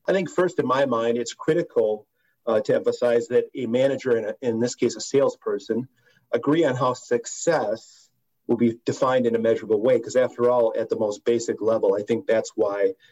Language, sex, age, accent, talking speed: English, male, 40-59, American, 200 wpm